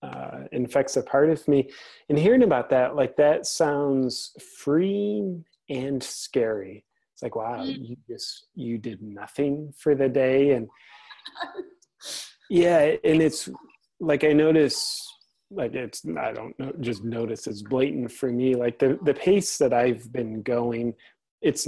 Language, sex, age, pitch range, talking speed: English, male, 30-49, 125-150 Hz, 150 wpm